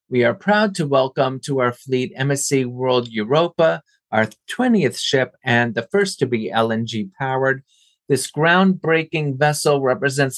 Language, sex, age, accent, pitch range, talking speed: English, male, 30-49, American, 115-150 Hz, 145 wpm